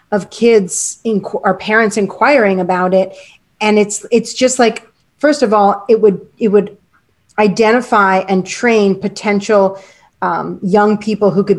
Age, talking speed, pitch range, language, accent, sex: 30-49, 150 wpm, 190-220 Hz, English, American, female